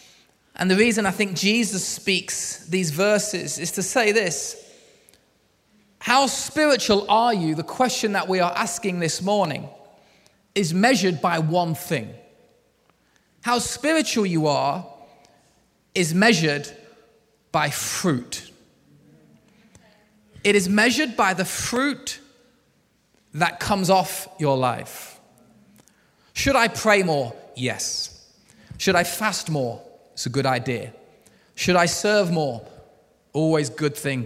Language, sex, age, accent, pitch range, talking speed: English, male, 20-39, British, 155-220 Hz, 125 wpm